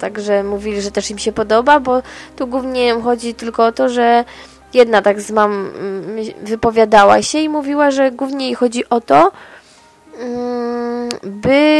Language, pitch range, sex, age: English, 215-260 Hz, female, 20-39